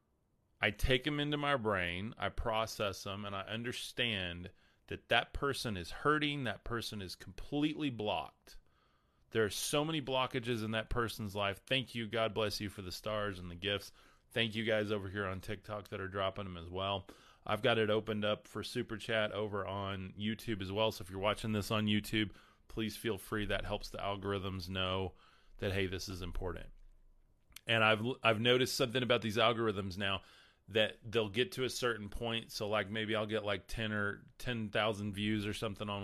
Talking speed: 195 wpm